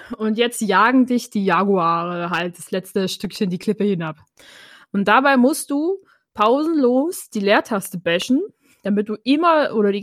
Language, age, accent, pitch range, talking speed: German, 20-39, German, 200-270 Hz, 155 wpm